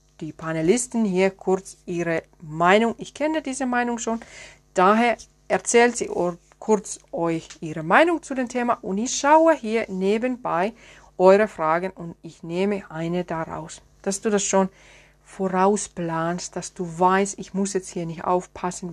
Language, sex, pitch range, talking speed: German, female, 175-215 Hz, 150 wpm